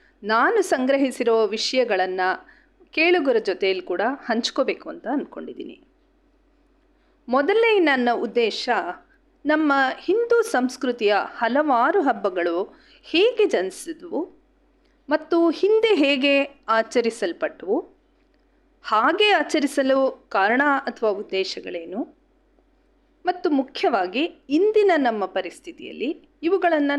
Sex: female